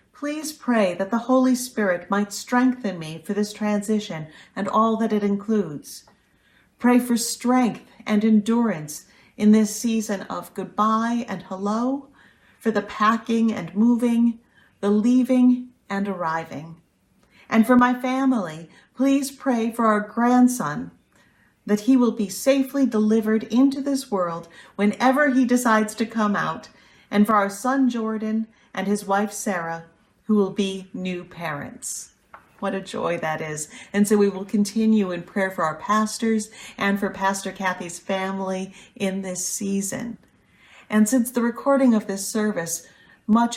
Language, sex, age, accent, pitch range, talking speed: English, female, 40-59, American, 195-235 Hz, 145 wpm